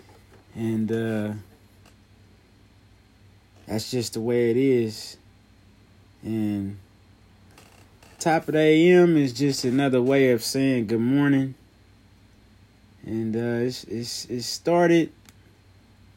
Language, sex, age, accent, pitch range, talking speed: English, male, 20-39, American, 100-130 Hz, 95 wpm